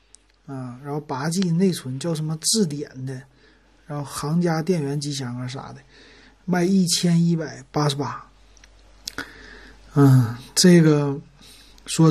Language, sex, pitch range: Chinese, male, 135-170 Hz